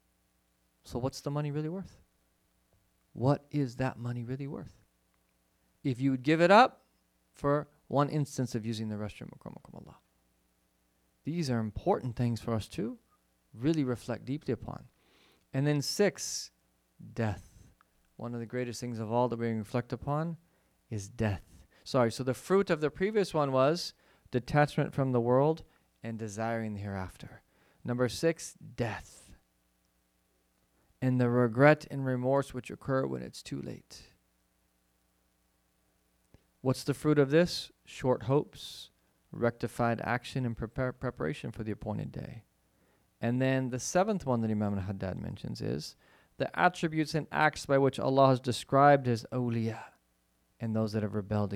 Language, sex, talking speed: English, male, 145 wpm